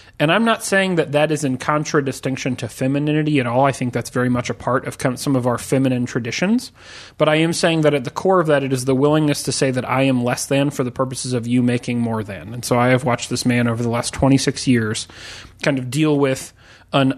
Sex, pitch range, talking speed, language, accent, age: male, 125-145 Hz, 250 wpm, English, American, 30-49